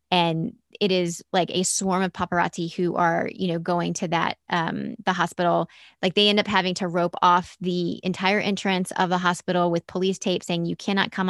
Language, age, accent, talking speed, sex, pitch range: English, 20-39, American, 205 wpm, female, 175-210 Hz